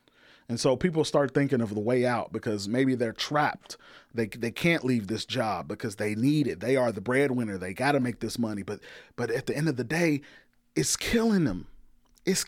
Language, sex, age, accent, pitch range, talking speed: English, male, 30-49, American, 125-200 Hz, 215 wpm